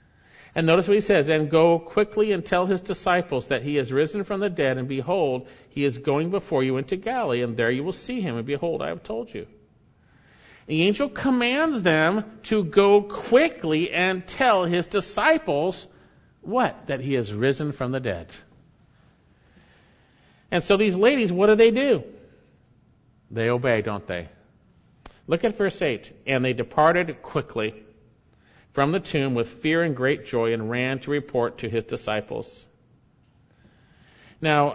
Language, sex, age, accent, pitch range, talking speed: English, male, 50-69, American, 135-200 Hz, 165 wpm